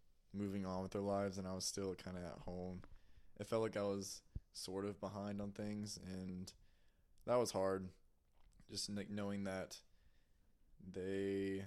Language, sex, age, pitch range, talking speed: English, male, 20-39, 90-100 Hz, 160 wpm